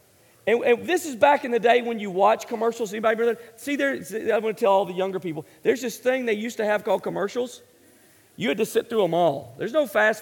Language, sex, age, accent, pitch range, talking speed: English, male, 40-59, American, 200-285 Hz, 255 wpm